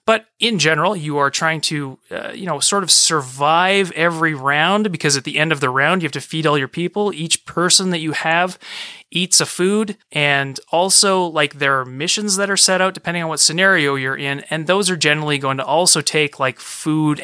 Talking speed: 220 wpm